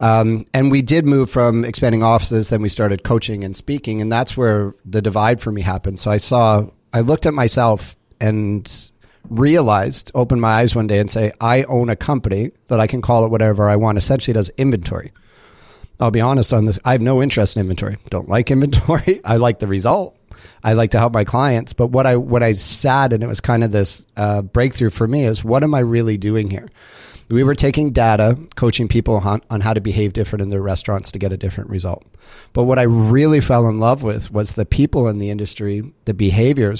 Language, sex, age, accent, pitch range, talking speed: English, male, 40-59, American, 105-120 Hz, 220 wpm